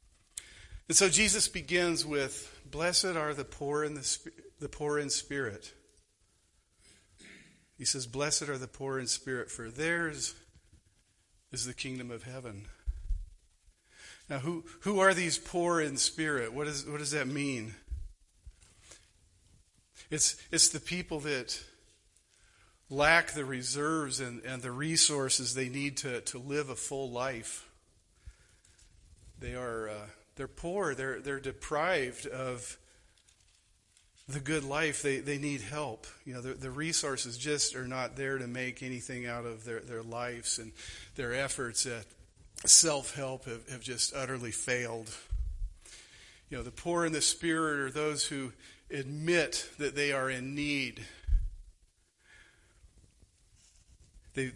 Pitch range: 100-145 Hz